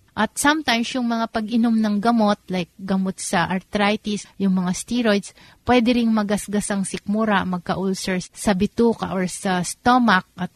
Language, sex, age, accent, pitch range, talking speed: Filipino, female, 30-49, native, 185-215 Hz, 150 wpm